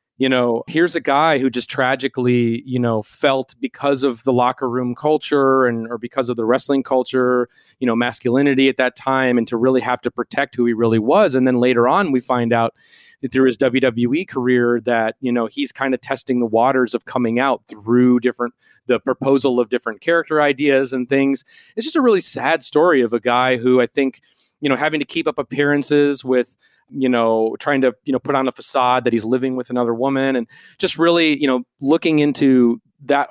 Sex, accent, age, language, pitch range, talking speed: male, American, 30-49, English, 120-135 Hz, 215 wpm